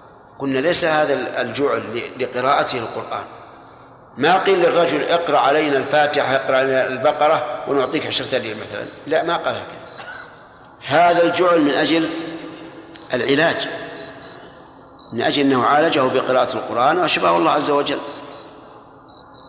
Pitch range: 130-160 Hz